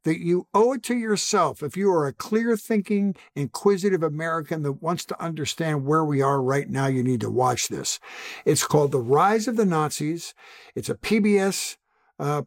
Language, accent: English, American